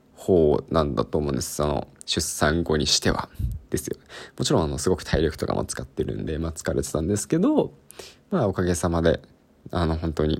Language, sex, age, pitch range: Japanese, male, 20-39, 80-115 Hz